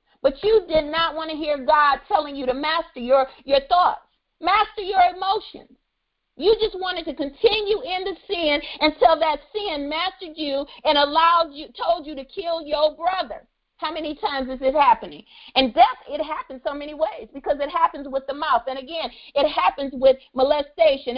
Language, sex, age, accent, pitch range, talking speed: English, female, 40-59, American, 290-360 Hz, 185 wpm